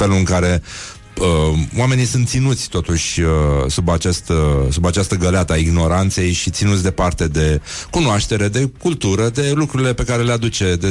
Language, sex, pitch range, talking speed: Romanian, male, 85-115 Hz, 170 wpm